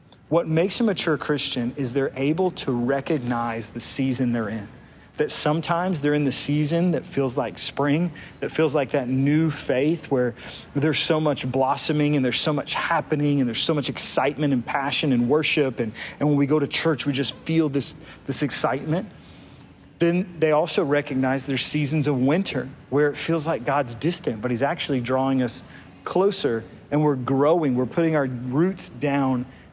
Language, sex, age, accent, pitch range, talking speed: English, male, 40-59, American, 130-155 Hz, 180 wpm